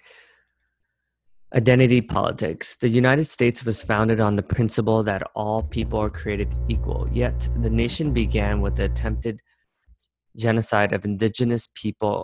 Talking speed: 130 wpm